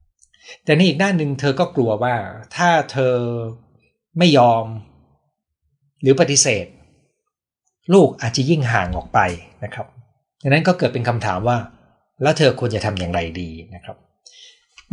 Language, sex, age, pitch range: Thai, male, 60-79, 105-145 Hz